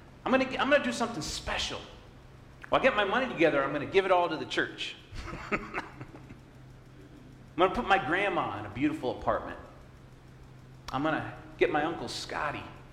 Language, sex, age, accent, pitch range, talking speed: English, male, 40-59, American, 90-130 Hz, 180 wpm